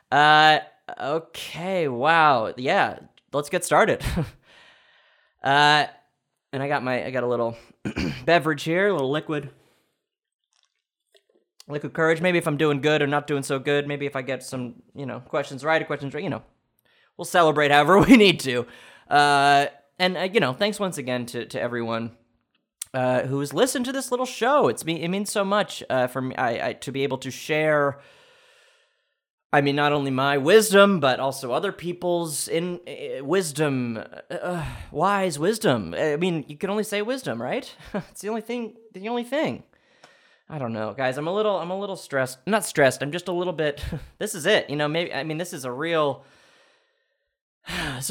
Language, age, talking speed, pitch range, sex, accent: English, 20-39, 190 wpm, 135-190 Hz, male, American